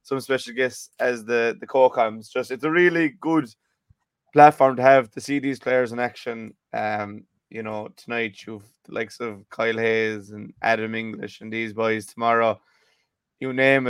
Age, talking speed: 20-39, 175 wpm